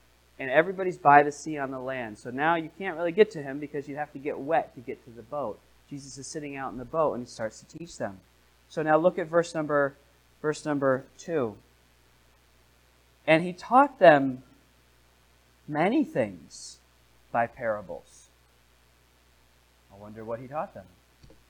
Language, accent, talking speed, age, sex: English, American, 175 wpm, 30-49, male